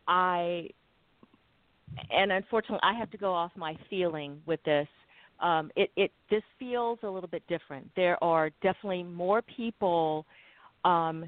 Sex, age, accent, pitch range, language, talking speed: female, 50-69, American, 160-200 Hz, English, 145 wpm